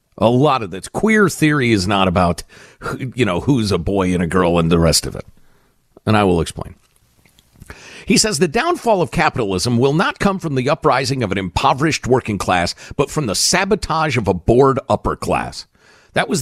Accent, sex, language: American, male, English